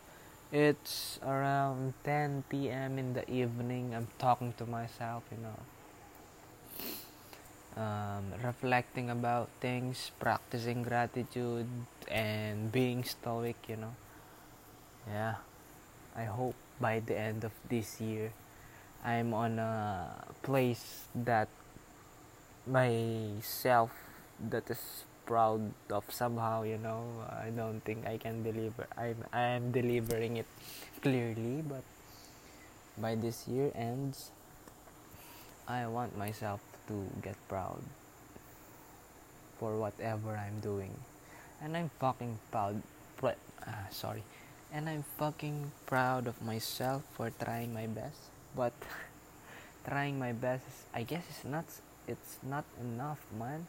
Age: 20-39